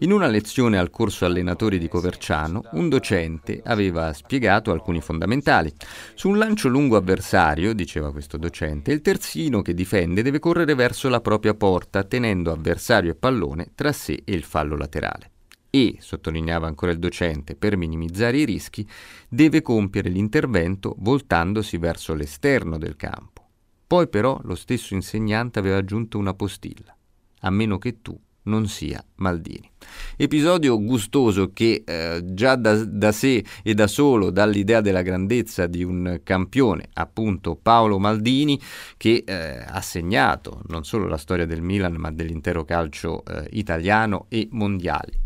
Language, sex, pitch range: Italian, male, 90-130 Hz